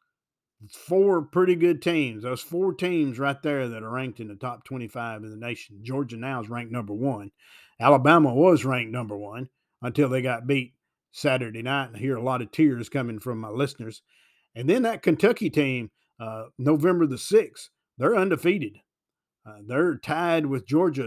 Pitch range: 125-160 Hz